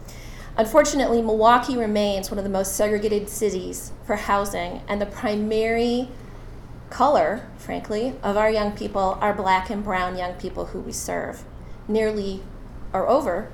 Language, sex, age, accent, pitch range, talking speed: English, female, 30-49, American, 195-235 Hz, 140 wpm